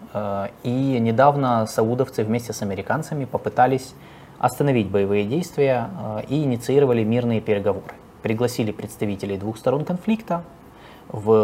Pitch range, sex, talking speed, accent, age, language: 105-130 Hz, male, 105 wpm, native, 20-39, Russian